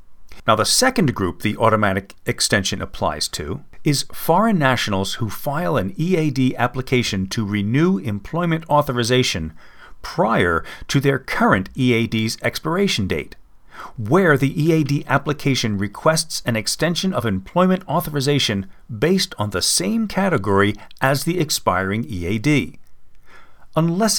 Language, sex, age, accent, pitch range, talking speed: English, male, 50-69, American, 110-160 Hz, 120 wpm